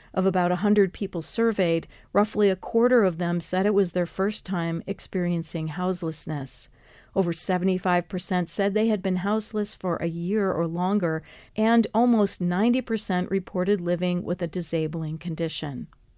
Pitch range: 175-215 Hz